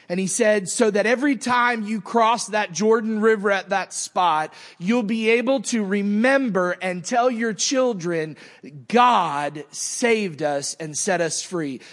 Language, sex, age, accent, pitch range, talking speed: English, male, 30-49, American, 165-220 Hz, 155 wpm